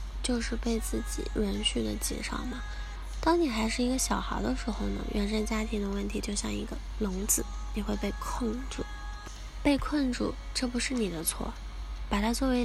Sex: female